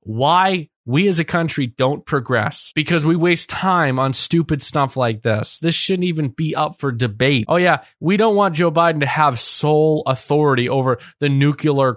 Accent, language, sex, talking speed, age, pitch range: American, English, male, 185 wpm, 20-39, 130-170 Hz